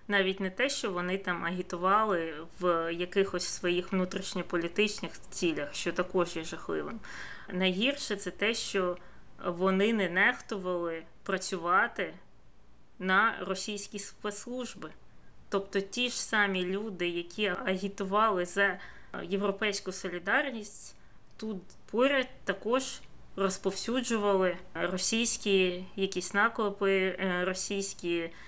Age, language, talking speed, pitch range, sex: 20-39, Ukrainian, 95 wpm, 175-205 Hz, female